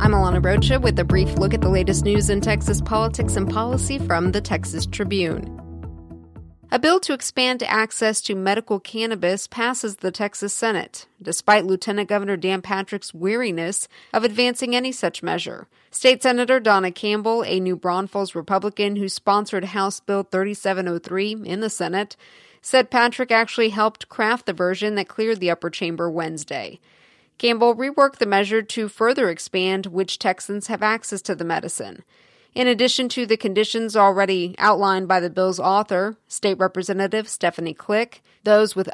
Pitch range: 180-220 Hz